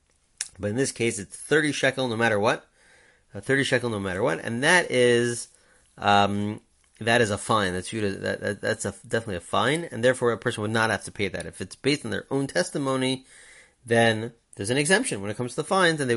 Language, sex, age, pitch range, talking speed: English, male, 30-49, 100-130 Hz, 225 wpm